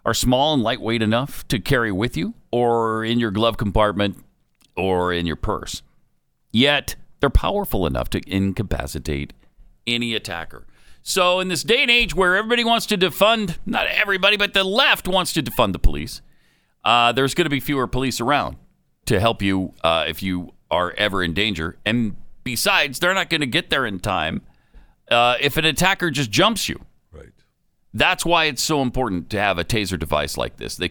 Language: English